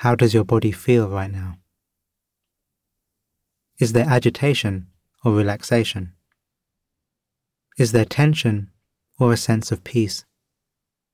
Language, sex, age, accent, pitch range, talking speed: English, male, 30-49, British, 95-120 Hz, 110 wpm